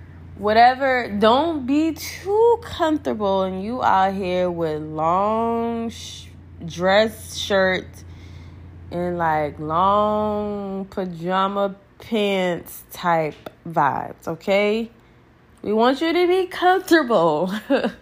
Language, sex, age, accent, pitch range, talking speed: English, female, 20-39, American, 180-245 Hz, 95 wpm